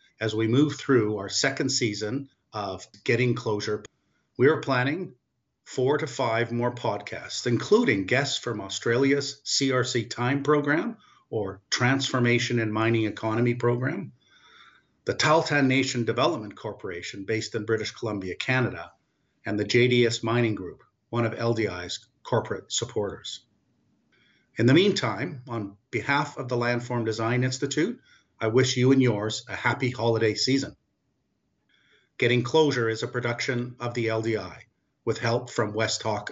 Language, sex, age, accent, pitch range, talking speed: English, male, 50-69, American, 110-135 Hz, 135 wpm